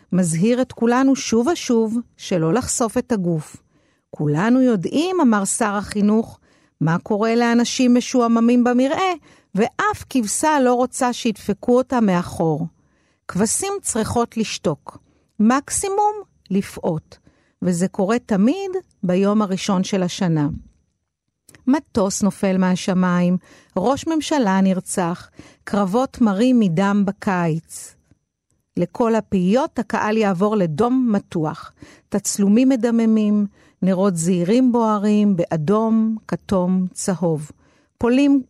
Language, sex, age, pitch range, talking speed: Hebrew, female, 50-69, 190-245 Hz, 100 wpm